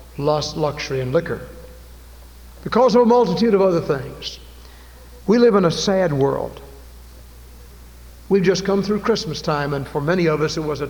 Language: English